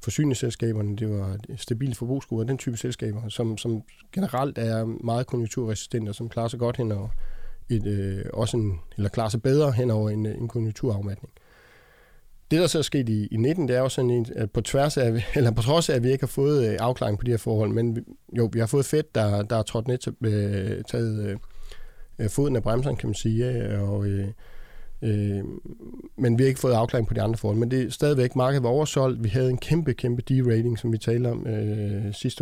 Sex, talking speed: male, 215 wpm